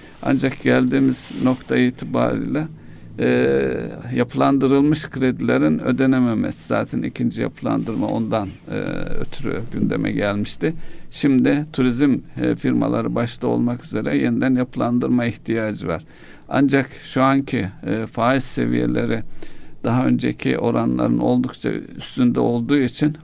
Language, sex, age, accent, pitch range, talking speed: Turkish, male, 60-79, native, 105-135 Hz, 100 wpm